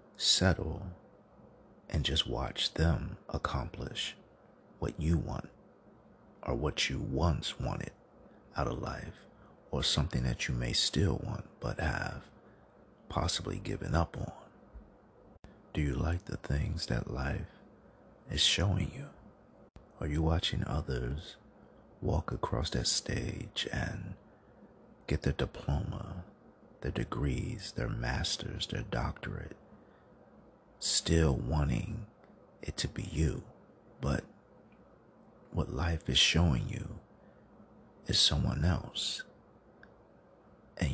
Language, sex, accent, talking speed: English, male, American, 110 wpm